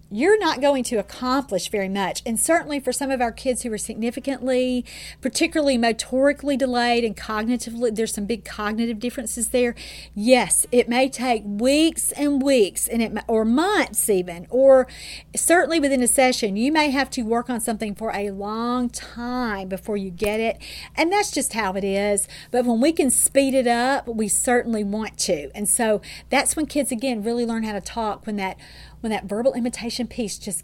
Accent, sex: American, female